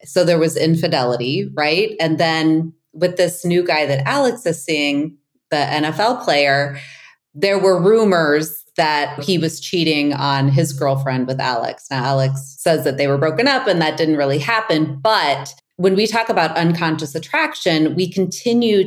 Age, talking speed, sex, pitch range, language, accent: 30-49, 165 wpm, female, 145-185 Hz, English, American